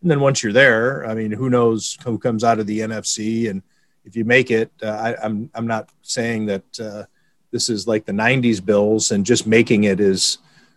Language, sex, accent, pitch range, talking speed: English, male, American, 115-135 Hz, 215 wpm